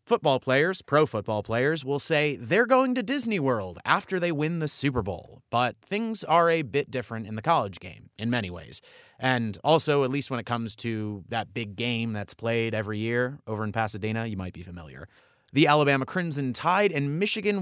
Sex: male